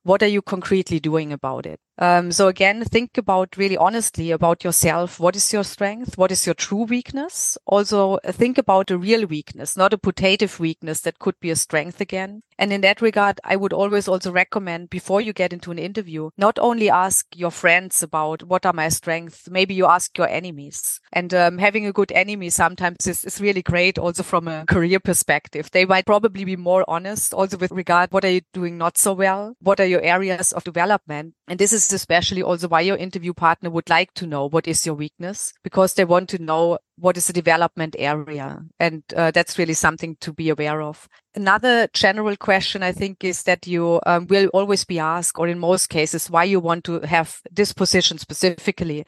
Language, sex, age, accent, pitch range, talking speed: English, female, 30-49, German, 165-195 Hz, 210 wpm